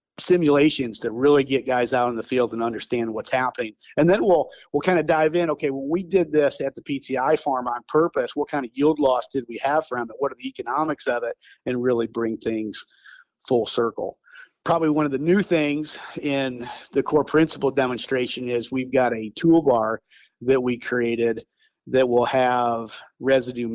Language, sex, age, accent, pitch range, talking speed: English, male, 50-69, American, 120-155 Hz, 195 wpm